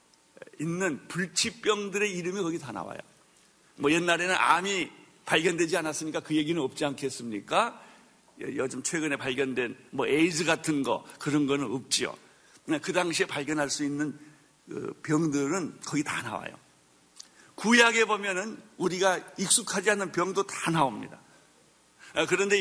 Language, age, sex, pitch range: Korean, 60-79, male, 150-210 Hz